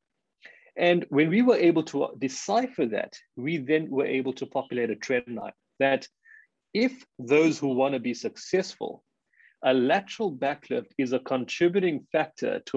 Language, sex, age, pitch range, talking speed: English, male, 30-49, 125-165 Hz, 155 wpm